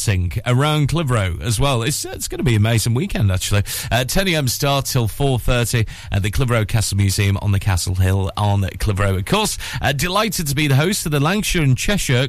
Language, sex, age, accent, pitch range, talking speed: English, male, 40-59, British, 105-145 Hz, 215 wpm